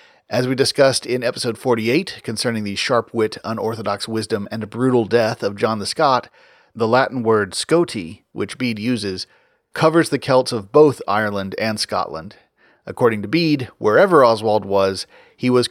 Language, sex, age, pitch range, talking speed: English, male, 40-59, 110-140 Hz, 165 wpm